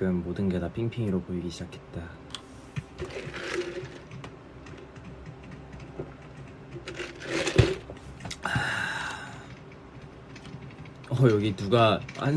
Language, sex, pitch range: Korean, male, 100-135 Hz